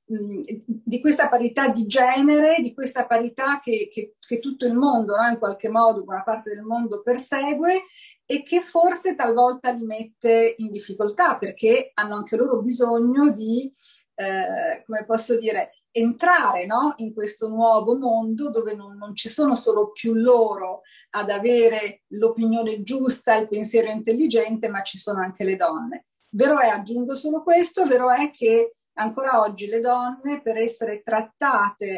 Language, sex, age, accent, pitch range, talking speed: Italian, female, 40-59, native, 215-270 Hz, 150 wpm